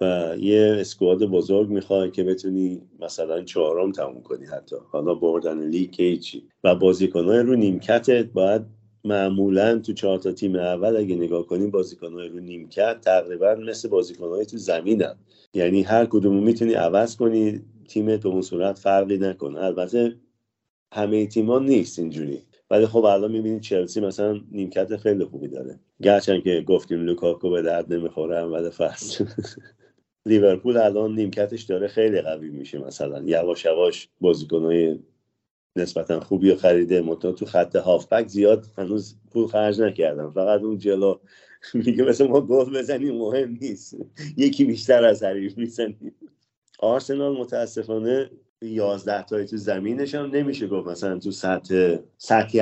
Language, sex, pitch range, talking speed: Persian, male, 90-110 Hz, 135 wpm